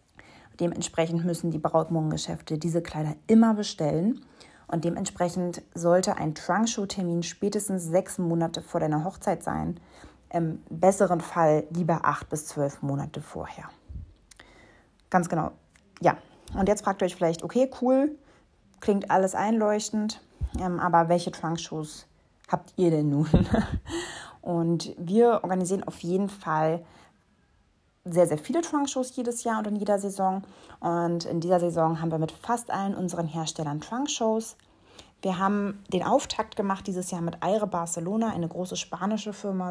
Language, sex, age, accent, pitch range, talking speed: German, female, 30-49, German, 165-200 Hz, 140 wpm